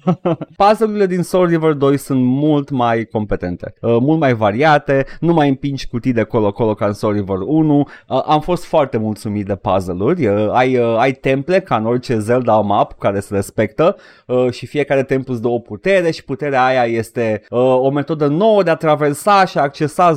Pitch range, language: 110-155 Hz, Romanian